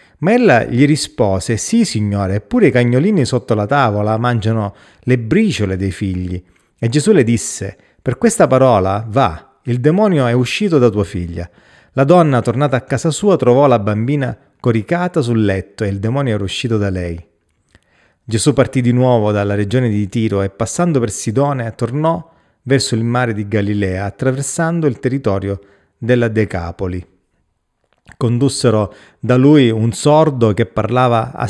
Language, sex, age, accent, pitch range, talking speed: Italian, male, 30-49, native, 105-135 Hz, 155 wpm